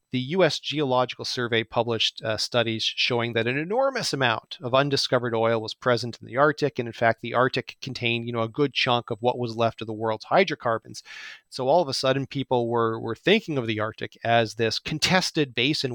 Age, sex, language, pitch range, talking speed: 40-59, male, English, 115-145 Hz, 205 wpm